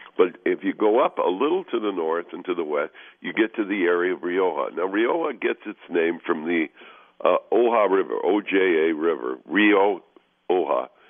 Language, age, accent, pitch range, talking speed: English, 60-79, American, 345-430 Hz, 185 wpm